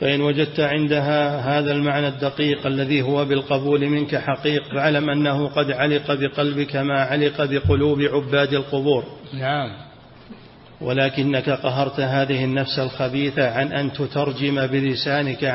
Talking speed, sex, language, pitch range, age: 120 wpm, male, Arabic, 135-145 Hz, 40-59